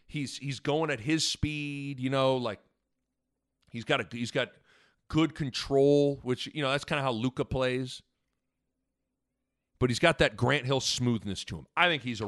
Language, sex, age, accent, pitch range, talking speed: English, male, 40-59, American, 120-165 Hz, 185 wpm